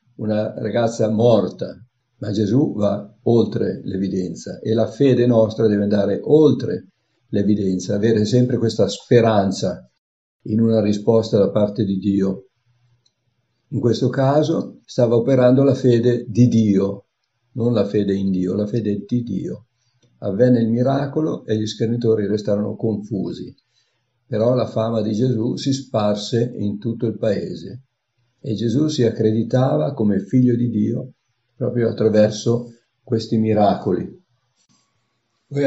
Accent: native